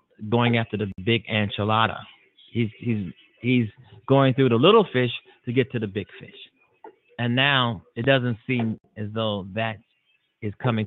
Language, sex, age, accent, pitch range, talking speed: English, male, 30-49, American, 105-130 Hz, 160 wpm